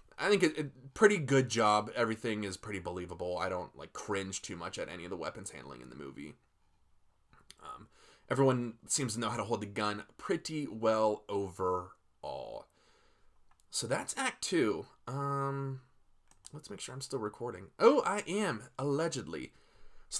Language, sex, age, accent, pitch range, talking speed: English, male, 20-39, American, 105-150 Hz, 165 wpm